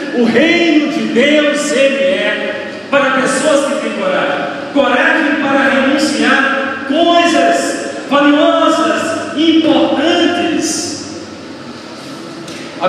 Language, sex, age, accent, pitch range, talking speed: Portuguese, male, 40-59, Brazilian, 270-310 Hz, 85 wpm